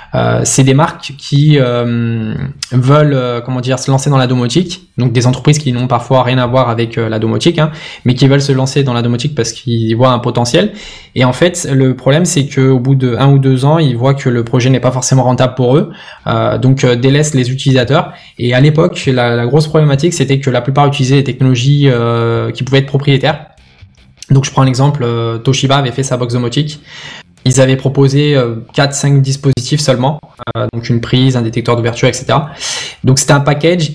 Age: 20-39